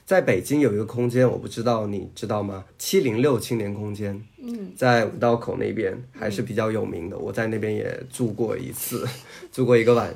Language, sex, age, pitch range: Chinese, male, 20-39, 110-135 Hz